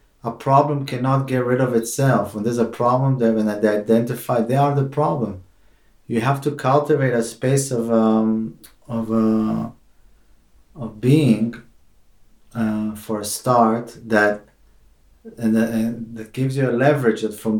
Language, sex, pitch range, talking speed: English, male, 105-115 Hz, 155 wpm